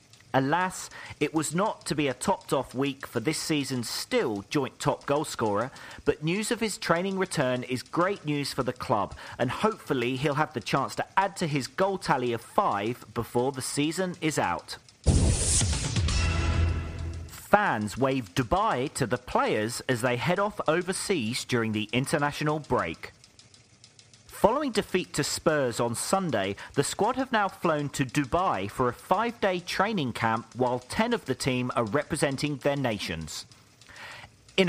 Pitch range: 120-170 Hz